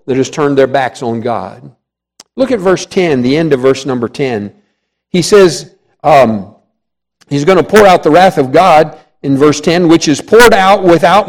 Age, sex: 50-69, male